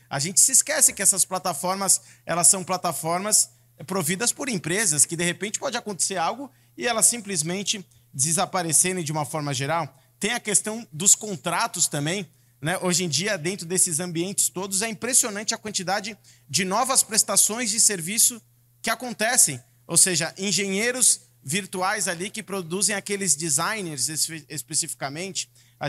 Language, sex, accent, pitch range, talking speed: Portuguese, male, Brazilian, 155-200 Hz, 145 wpm